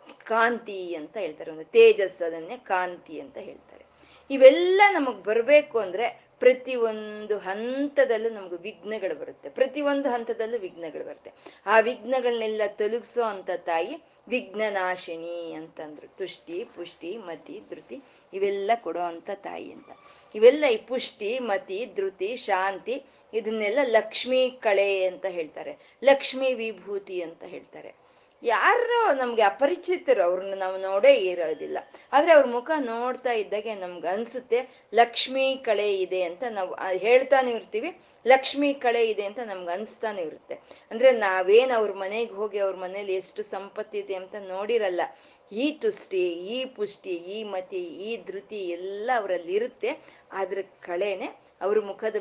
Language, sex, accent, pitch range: Kannada, female, native, 190-265 Hz